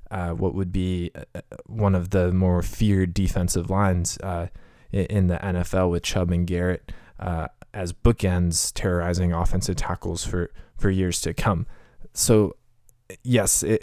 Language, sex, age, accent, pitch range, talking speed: English, male, 20-39, American, 90-100 Hz, 150 wpm